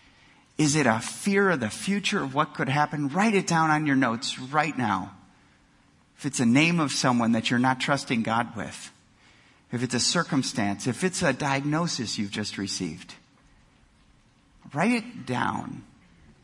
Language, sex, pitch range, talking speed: English, male, 115-175 Hz, 165 wpm